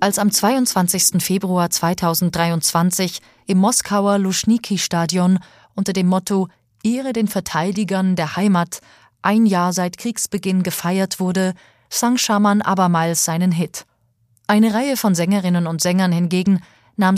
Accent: German